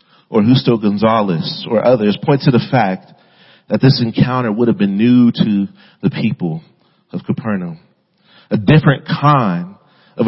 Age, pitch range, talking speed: 40-59, 125-175 Hz, 145 wpm